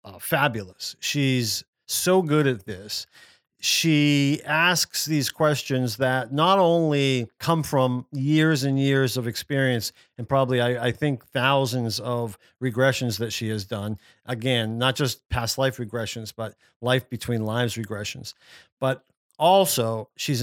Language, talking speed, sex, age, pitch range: English, 140 wpm, male, 40-59, 115-145 Hz